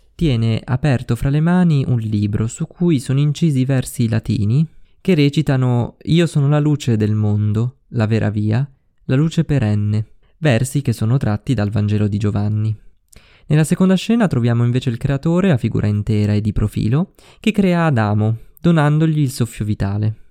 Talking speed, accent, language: 165 wpm, native, Italian